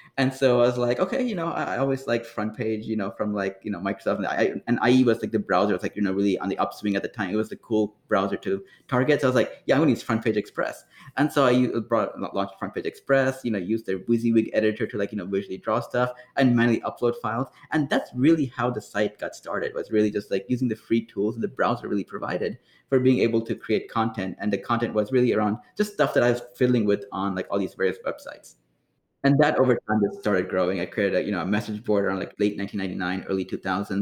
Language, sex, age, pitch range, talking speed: English, male, 20-39, 105-125 Hz, 260 wpm